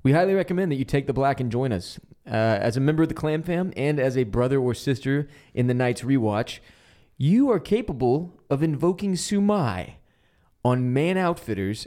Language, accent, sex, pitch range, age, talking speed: English, American, male, 115-145 Hz, 20-39, 190 wpm